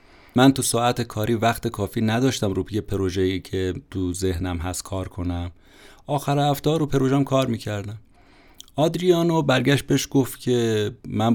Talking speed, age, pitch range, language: 150 wpm, 30-49, 95-125 Hz, Persian